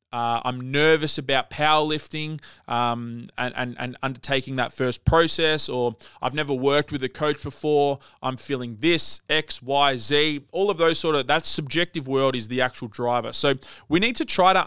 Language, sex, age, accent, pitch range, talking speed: English, male, 20-39, Australian, 125-160 Hz, 185 wpm